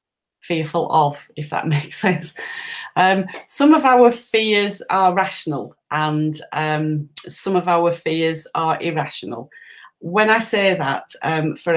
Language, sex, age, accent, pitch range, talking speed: English, female, 30-49, British, 155-180 Hz, 140 wpm